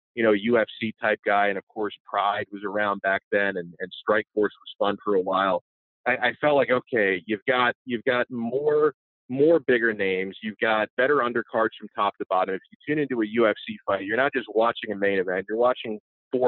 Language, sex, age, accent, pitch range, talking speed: English, male, 30-49, American, 100-120 Hz, 220 wpm